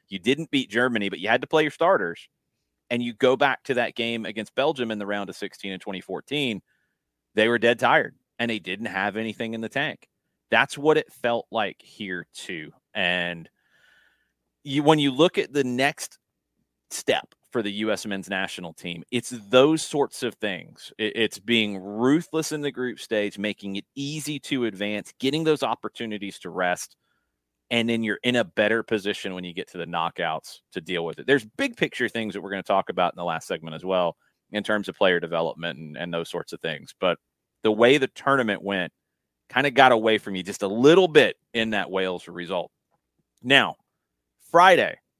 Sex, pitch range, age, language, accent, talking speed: male, 100-135 Hz, 30-49, English, American, 195 wpm